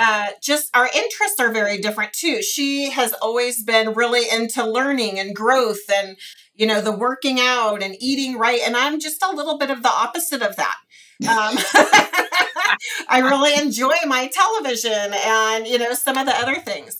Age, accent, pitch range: 40-59, American, 225-275 Hz